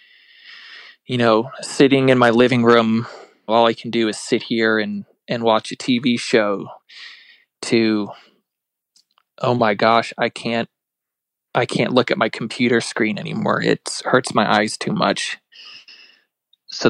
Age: 20-39